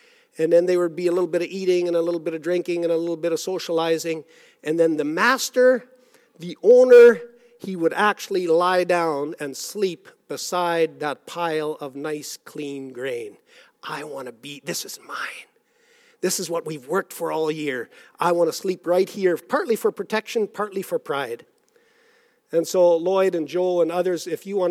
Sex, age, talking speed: male, 50-69, 190 wpm